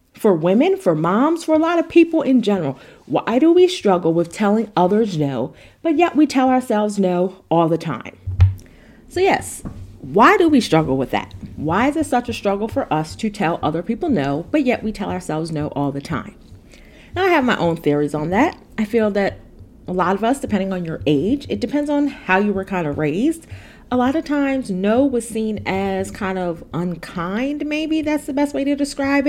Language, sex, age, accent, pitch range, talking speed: English, female, 30-49, American, 175-270 Hz, 215 wpm